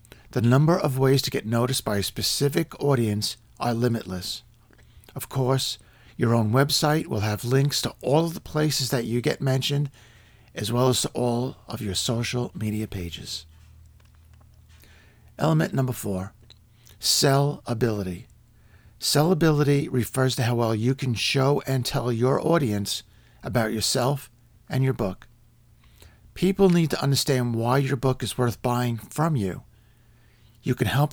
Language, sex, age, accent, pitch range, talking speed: English, male, 50-69, American, 105-135 Hz, 145 wpm